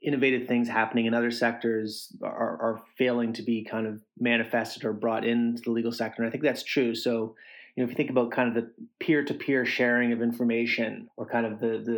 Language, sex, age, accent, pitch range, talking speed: English, male, 30-49, American, 115-125 Hz, 215 wpm